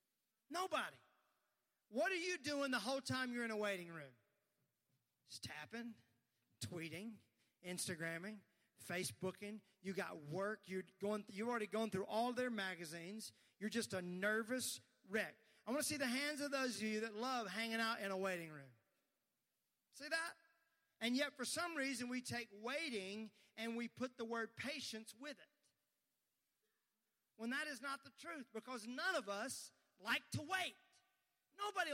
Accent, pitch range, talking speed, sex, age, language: American, 190-255 Hz, 160 wpm, male, 40-59, English